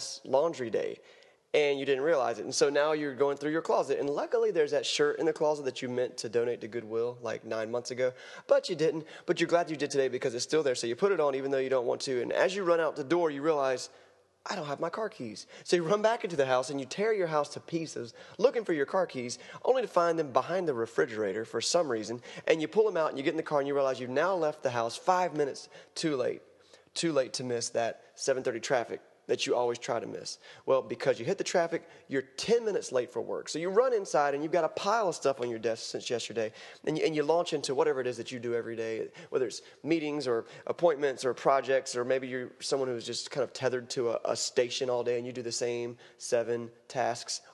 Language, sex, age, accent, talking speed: English, male, 30-49, American, 265 wpm